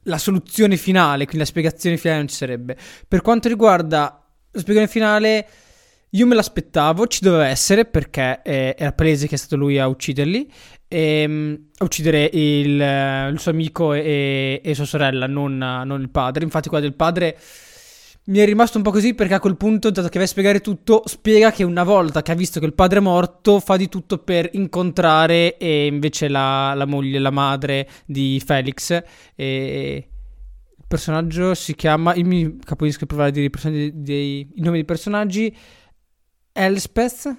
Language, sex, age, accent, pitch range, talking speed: Italian, male, 20-39, native, 150-200 Hz, 180 wpm